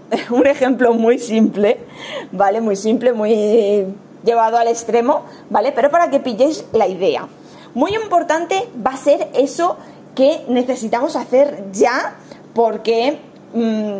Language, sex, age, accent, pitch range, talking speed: Spanish, female, 20-39, Spanish, 220-295 Hz, 125 wpm